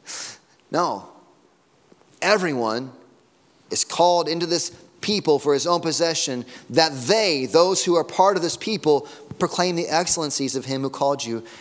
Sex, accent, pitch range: male, American, 135-175 Hz